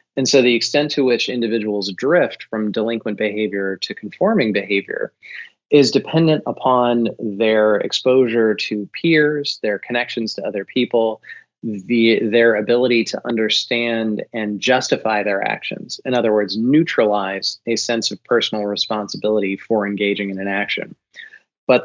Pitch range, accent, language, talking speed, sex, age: 105-125 Hz, American, English, 135 wpm, male, 30-49